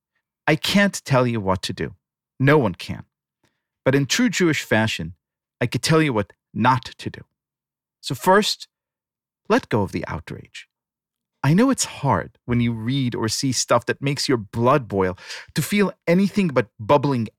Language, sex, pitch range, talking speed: English, male, 120-185 Hz, 175 wpm